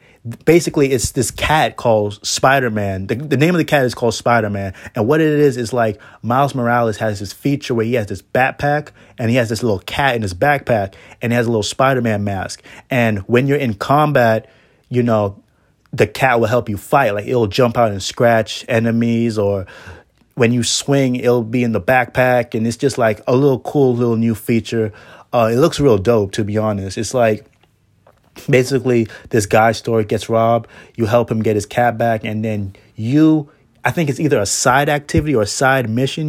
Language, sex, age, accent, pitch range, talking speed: English, male, 30-49, American, 110-130 Hz, 205 wpm